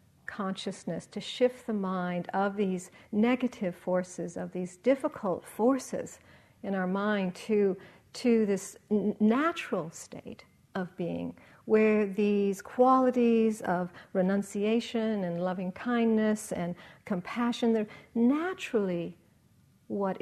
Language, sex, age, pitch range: English, female, 50-69, 180-225 Hz